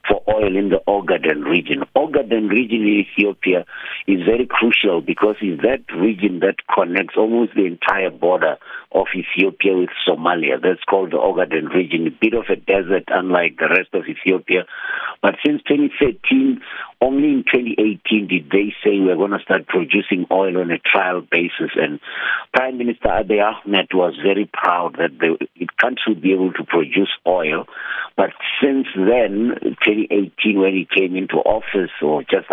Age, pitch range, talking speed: 60-79, 90-110 Hz, 160 wpm